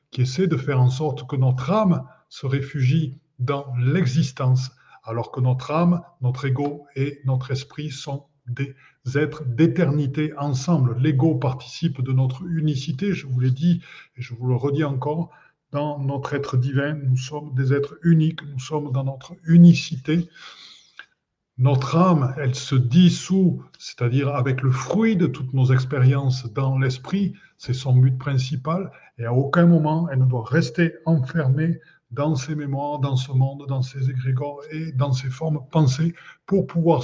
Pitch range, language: 130-155 Hz, French